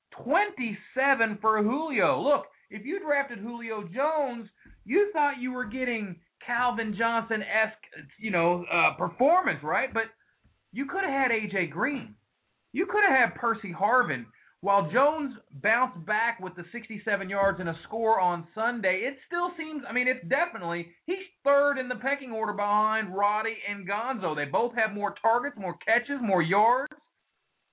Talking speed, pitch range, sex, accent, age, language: 160 wpm, 190-255 Hz, male, American, 30-49, English